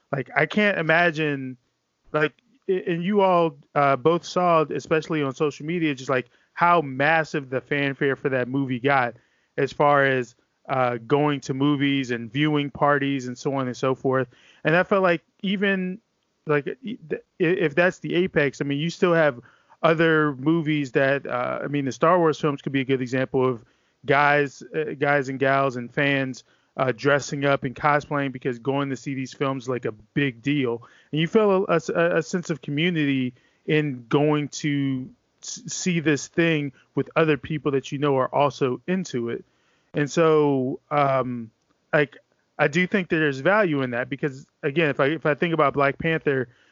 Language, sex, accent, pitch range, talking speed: English, male, American, 135-160 Hz, 180 wpm